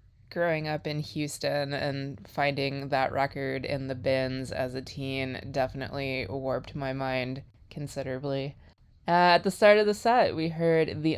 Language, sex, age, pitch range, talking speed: English, female, 20-39, 130-150 Hz, 155 wpm